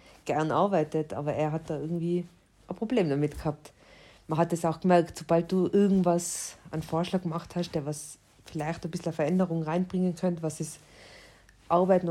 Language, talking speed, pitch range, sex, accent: German, 175 wpm, 150-180 Hz, female, German